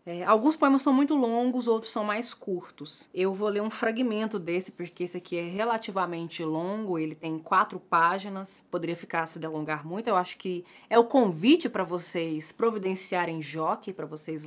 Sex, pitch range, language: female, 170-230 Hz, Portuguese